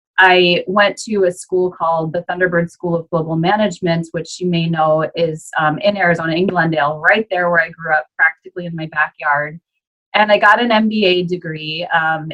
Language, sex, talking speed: English, female, 185 wpm